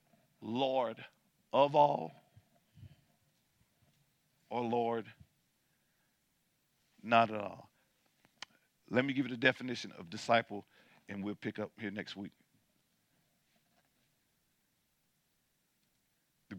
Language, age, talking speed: English, 50-69, 85 wpm